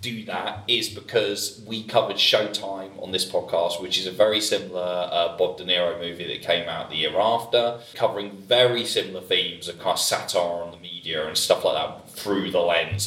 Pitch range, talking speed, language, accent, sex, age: 95-125 Hz, 200 wpm, English, British, male, 20-39